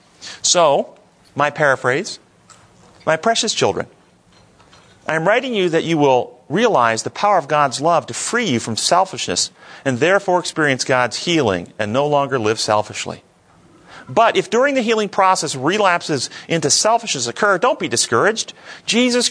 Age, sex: 40-59, male